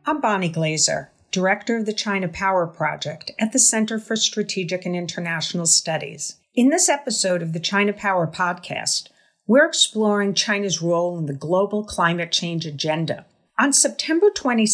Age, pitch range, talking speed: 50-69, 165-215 Hz, 150 wpm